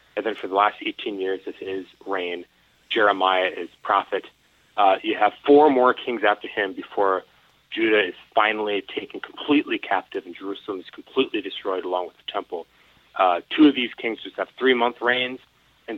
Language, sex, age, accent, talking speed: English, male, 30-49, American, 175 wpm